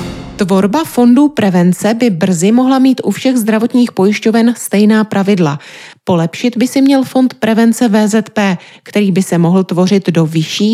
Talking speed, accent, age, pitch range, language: 150 wpm, native, 30-49, 180-230 Hz, Czech